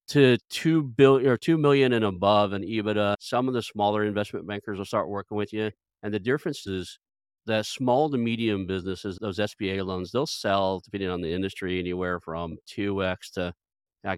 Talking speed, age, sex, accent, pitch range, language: 190 wpm, 40-59, male, American, 95-110 Hz, English